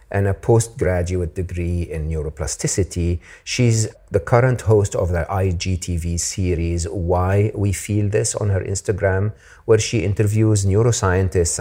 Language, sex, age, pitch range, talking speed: English, male, 50-69, 85-115 Hz, 130 wpm